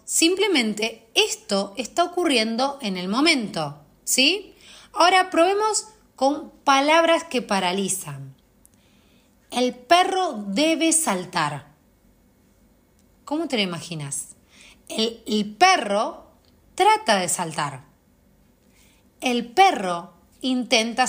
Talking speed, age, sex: 90 wpm, 30-49, female